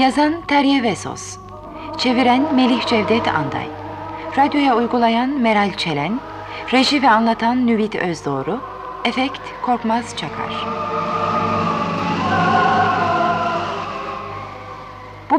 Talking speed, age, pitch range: 80 wpm, 30-49, 185-255 Hz